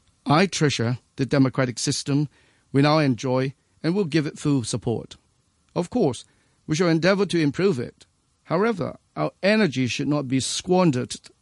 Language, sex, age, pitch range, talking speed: English, male, 50-69, 130-160 Hz, 150 wpm